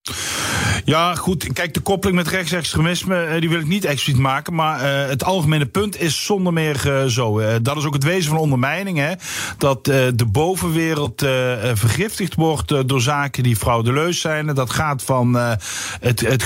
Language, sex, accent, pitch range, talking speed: Dutch, male, Dutch, 125-160 Hz, 155 wpm